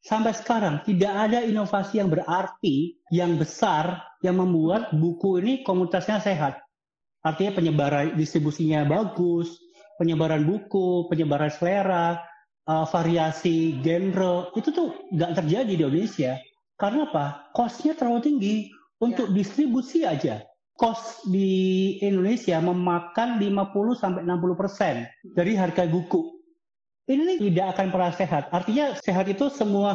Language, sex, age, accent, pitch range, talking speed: Indonesian, male, 30-49, native, 165-220 Hz, 110 wpm